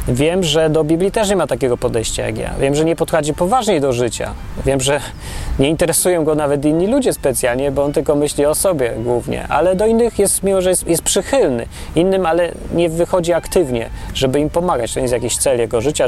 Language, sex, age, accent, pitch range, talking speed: Polish, male, 30-49, native, 125-175 Hz, 215 wpm